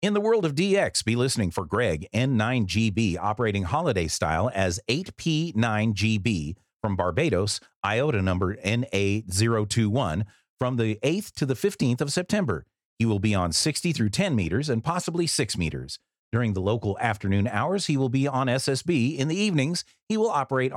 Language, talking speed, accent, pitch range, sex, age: English, 160 wpm, American, 100-140 Hz, male, 40-59